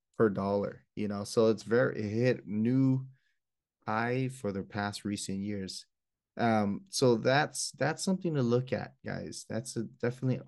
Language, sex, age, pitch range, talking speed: English, male, 20-39, 100-130 Hz, 150 wpm